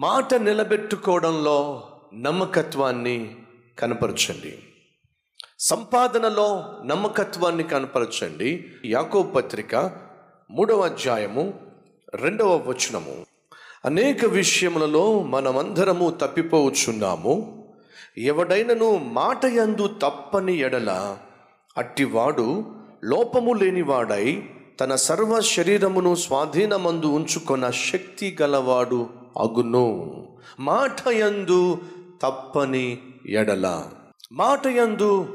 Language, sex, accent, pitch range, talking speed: Telugu, male, native, 135-205 Hz, 60 wpm